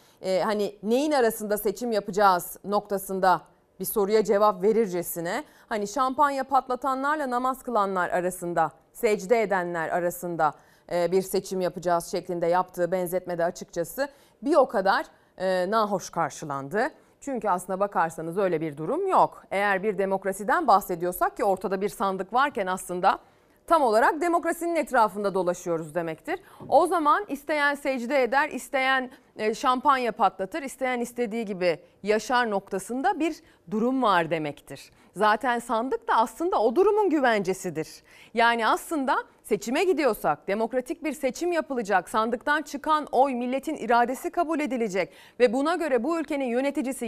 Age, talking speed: 30-49, 125 wpm